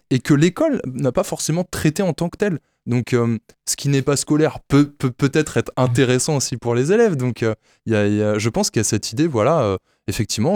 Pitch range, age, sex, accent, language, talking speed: 95-135 Hz, 20-39, male, French, French, 245 wpm